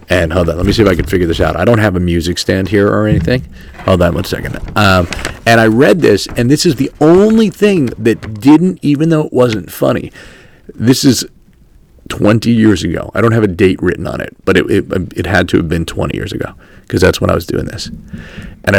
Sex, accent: male, American